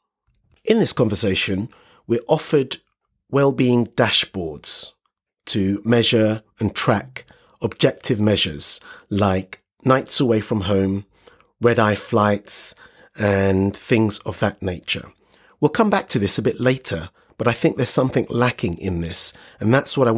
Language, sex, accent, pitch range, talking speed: English, male, British, 100-130 Hz, 135 wpm